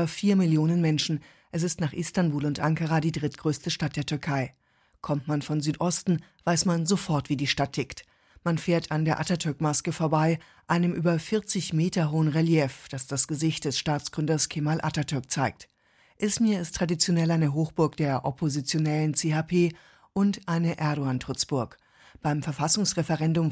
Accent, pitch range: German, 150-180 Hz